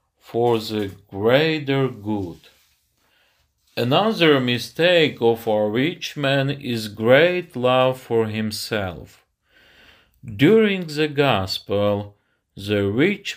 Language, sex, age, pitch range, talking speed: Ukrainian, male, 50-69, 110-155 Hz, 90 wpm